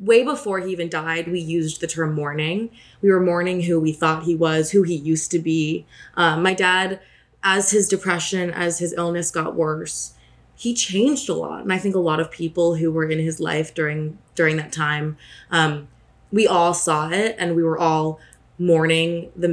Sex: female